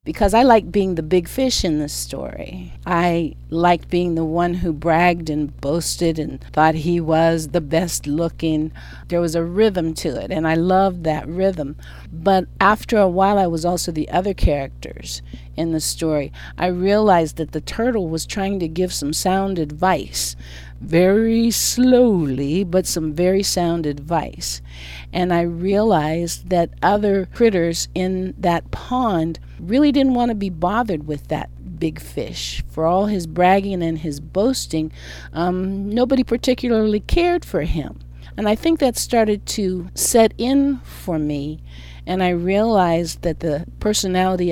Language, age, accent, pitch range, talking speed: English, 50-69, American, 155-195 Hz, 160 wpm